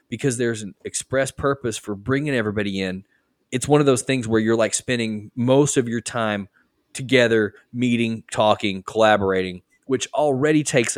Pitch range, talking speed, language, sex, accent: 105-135 Hz, 160 wpm, English, male, American